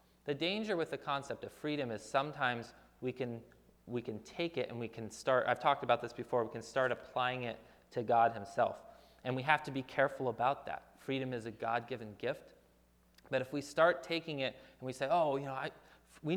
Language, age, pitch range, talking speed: English, 30-49, 115-145 Hz, 215 wpm